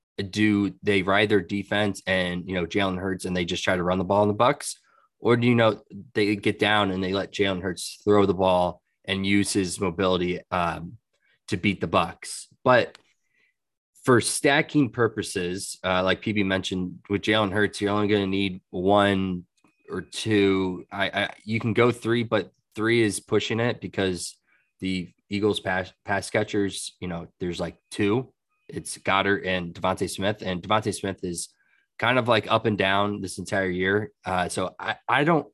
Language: English